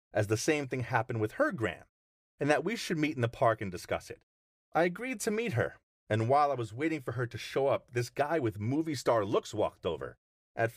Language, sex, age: English, male, 40-59